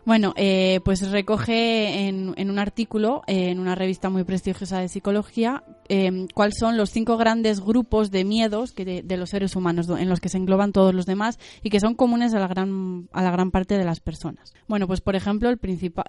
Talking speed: 220 wpm